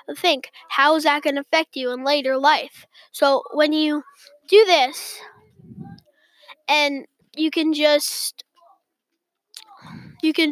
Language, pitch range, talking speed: English, 290-345 Hz, 125 wpm